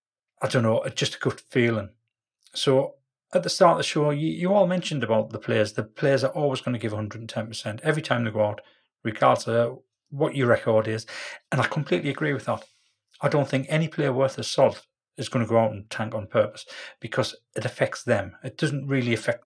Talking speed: 220 wpm